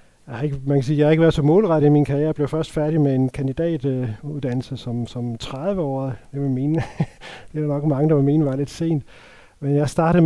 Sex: male